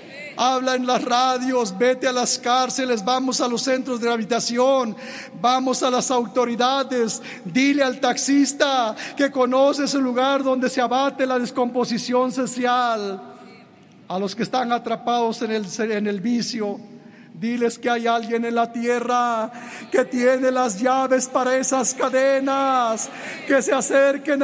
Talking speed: 145 wpm